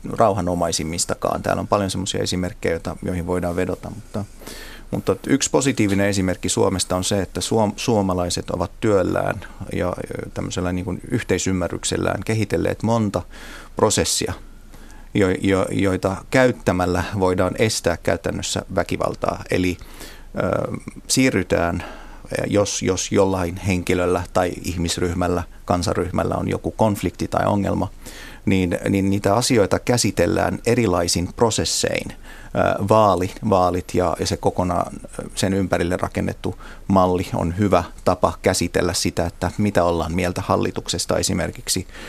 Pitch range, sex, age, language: 90-100 Hz, male, 30-49, Finnish